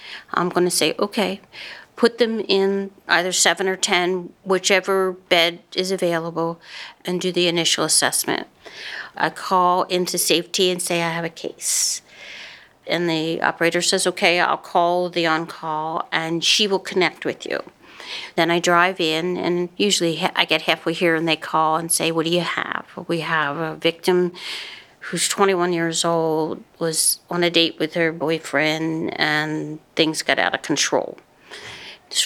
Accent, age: American, 60-79